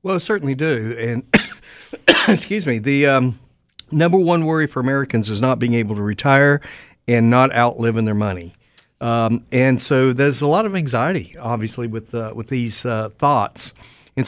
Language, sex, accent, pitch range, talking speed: English, male, American, 110-140 Hz, 170 wpm